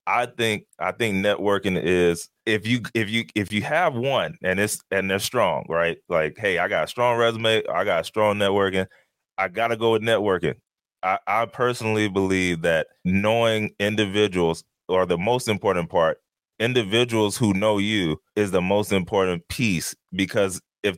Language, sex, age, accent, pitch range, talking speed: English, male, 20-39, American, 95-115 Hz, 170 wpm